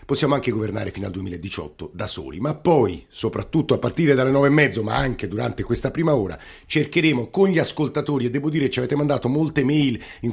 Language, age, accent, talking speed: Italian, 50-69, native, 215 wpm